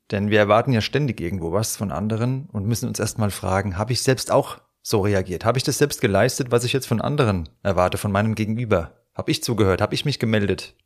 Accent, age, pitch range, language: German, 30-49, 95-115 Hz, German